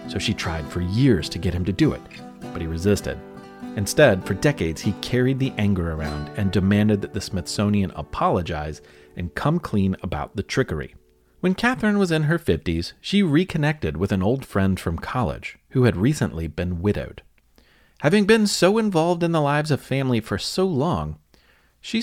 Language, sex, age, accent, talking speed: English, male, 30-49, American, 180 wpm